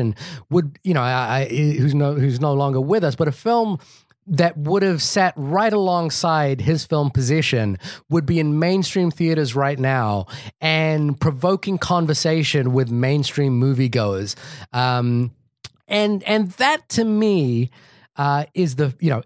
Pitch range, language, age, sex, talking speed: 135-175 Hz, English, 30-49, male, 150 wpm